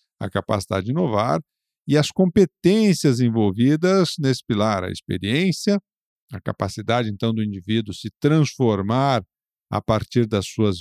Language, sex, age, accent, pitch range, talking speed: Portuguese, male, 50-69, Brazilian, 105-135 Hz, 130 wpm